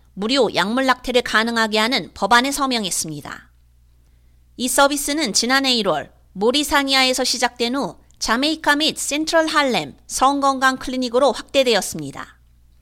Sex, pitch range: female, 195-285 Hz